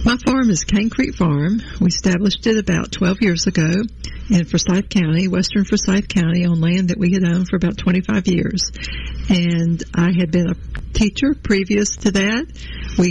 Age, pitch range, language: 60-79, 175-205 Hz, English